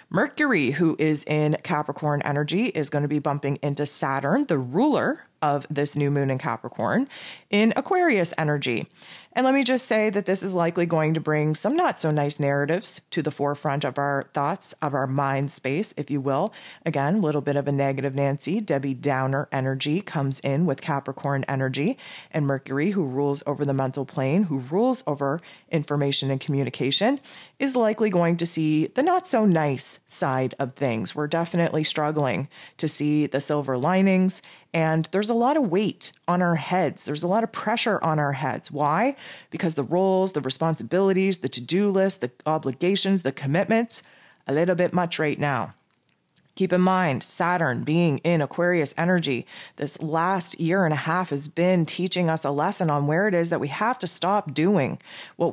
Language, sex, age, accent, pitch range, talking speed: English, female, 30-49, American, 145-185 Hz, 185 wpm